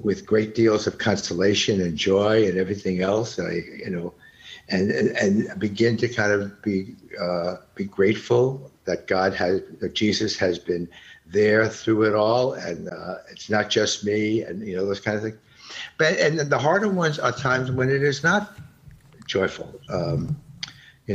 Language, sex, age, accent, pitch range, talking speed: English, male, 60-79, American, 95-130 Hz, 175 wpm